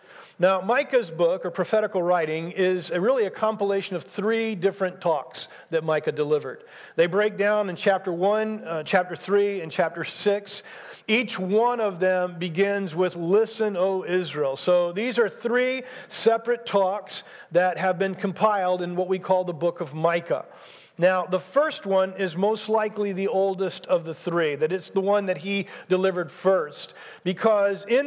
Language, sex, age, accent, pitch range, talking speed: English, male, 50-69, American, 170-215 Hz, 165 wpm